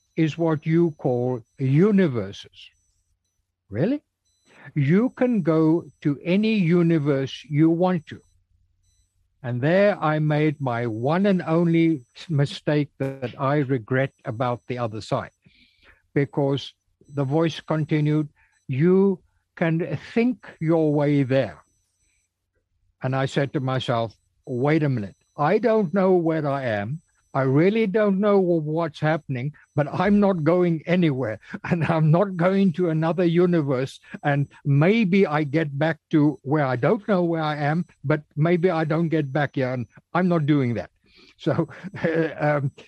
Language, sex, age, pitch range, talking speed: English, male, 60-79, 130-170 Hz, 140 wpm